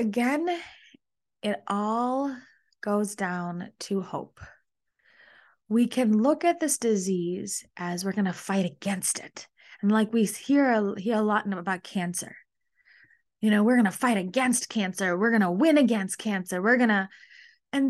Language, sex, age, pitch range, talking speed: English, female, 20-39, 200-270 Hz, 160 wpm